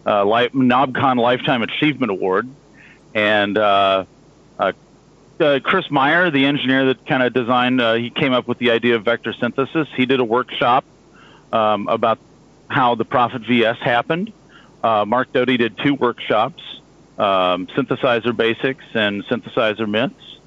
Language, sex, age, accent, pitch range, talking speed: English, male, 40-59, American, 110-130 Hz, 145 wpm